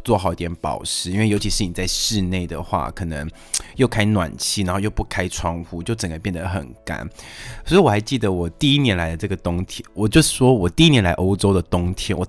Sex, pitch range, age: male, 90-130 Hz, 20-39